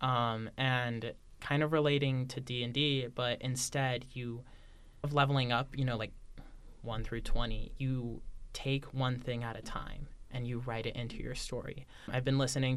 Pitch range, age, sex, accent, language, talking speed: 115-135 Hz, 20-39, male, American, English, 165 wpm